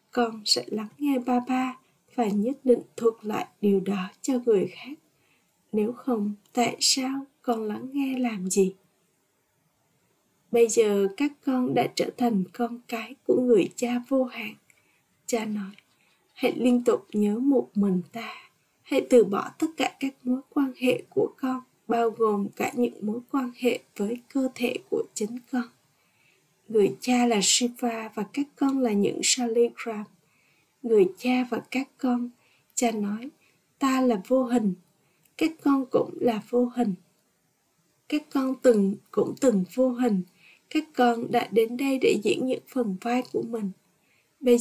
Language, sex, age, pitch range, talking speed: Vietnamese, female, 20-39, 210-260 Hz, 160 wpm